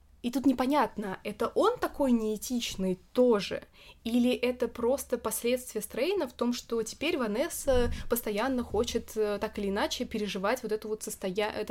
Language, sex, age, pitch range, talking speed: Russian, female, 20-39, 195-250 Hz, 145 wpm